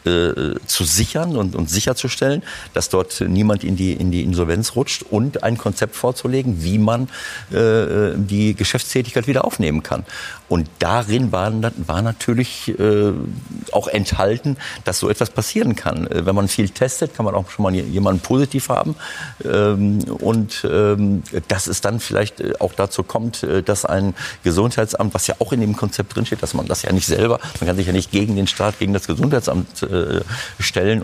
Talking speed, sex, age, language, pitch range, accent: 175 wpm, male, 50-69, German, 95-115 Hz, German